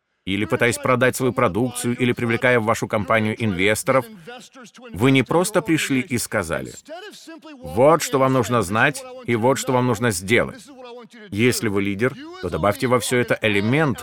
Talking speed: 160 wpm